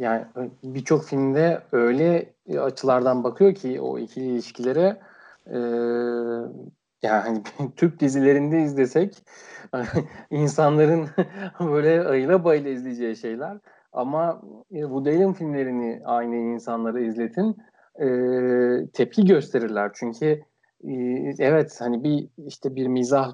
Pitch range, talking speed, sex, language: 125-160 Hz, 105 wpm, male, Turkish